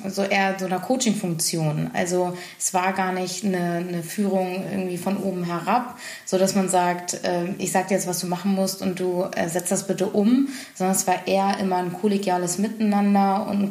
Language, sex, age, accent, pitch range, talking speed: German, female, 20-39, German, 180-205 Hz, 210 wpm